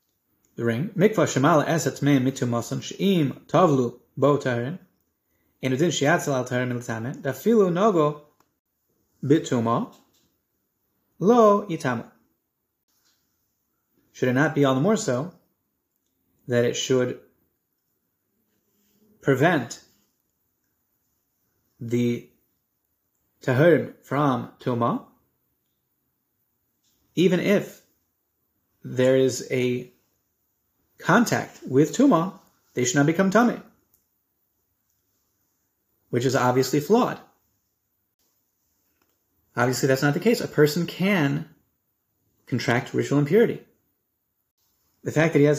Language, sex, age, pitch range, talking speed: English, male, 30-49, 120-155 Hz, 65 wpm